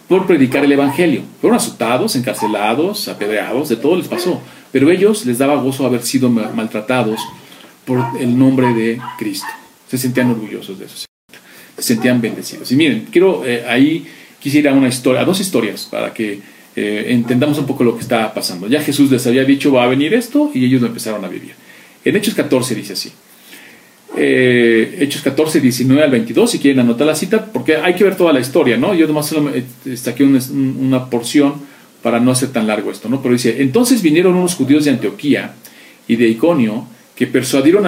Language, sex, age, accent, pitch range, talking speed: Spanish, male, 40-59, Mexican, 125-175 Hz, 190 wpm